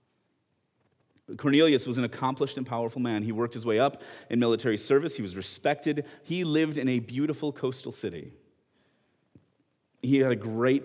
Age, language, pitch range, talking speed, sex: 30-49, English, 115-145 Hz, 160 wpm, male